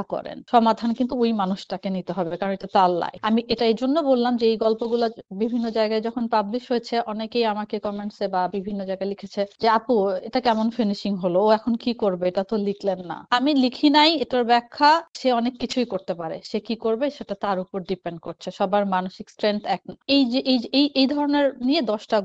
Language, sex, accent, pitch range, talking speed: Bengali, female, native, 190-235 Hz, 40 wpm